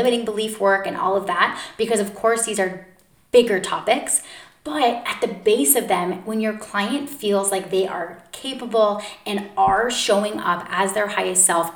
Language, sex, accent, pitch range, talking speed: English, female, American, 190-220 Hz, 185 wpm